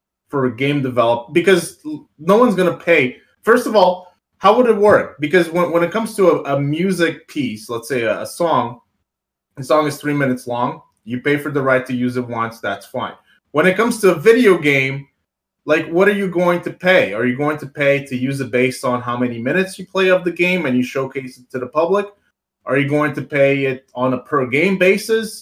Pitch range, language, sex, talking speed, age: 125-170 Hz, English, male, 230 wpm, 20-39